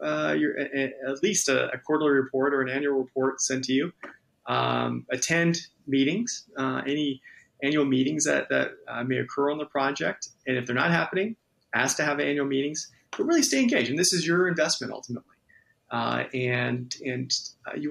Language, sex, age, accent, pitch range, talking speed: English, male, 30-49, American, 130-170 Hz, 190 wpm